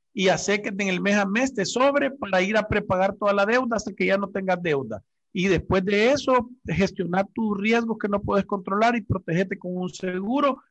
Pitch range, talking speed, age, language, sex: 140-200 Hz, 225 wpm, 50-69, Spanish, male